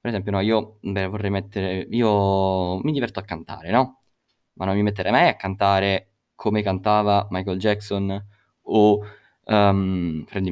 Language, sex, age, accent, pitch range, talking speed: Italian, male, 20-39, native, 95-120 Hz, 155 wpm